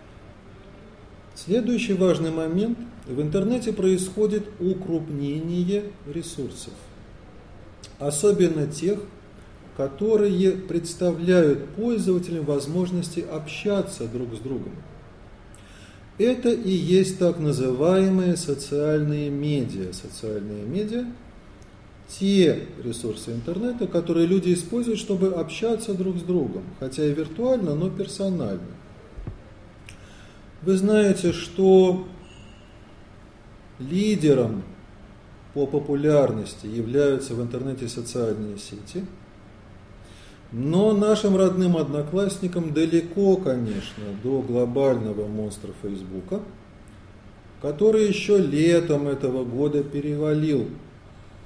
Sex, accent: male, native